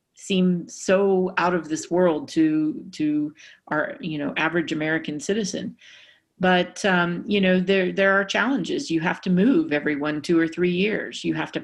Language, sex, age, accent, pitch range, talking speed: English, female, 40-59, American, 155-185 Hz, 180 wpm